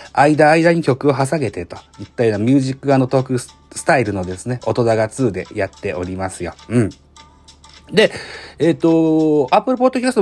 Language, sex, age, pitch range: Japanese, male, 40-59, 100-145 Hz